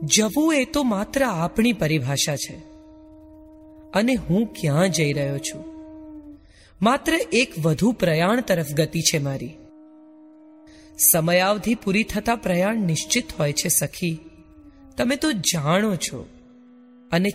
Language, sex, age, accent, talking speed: Gujarati, female, 30-49, native, 120 wpm